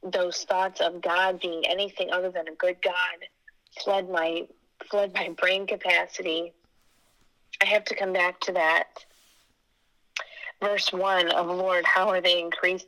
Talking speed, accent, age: 150 wpm, American, 30-49